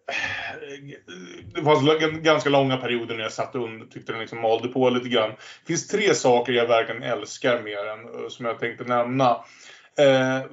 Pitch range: 120-145 Hz